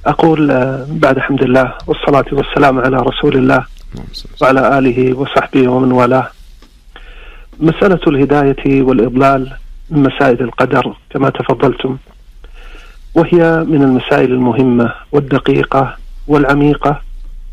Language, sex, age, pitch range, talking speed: Arabic, male, 50-69, 130-155 Hz, 95 wpm